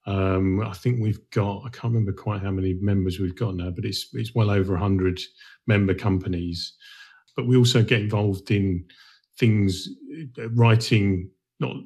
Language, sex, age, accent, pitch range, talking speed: English, male, 40-59, British, 95-115 Hz, 160 wpm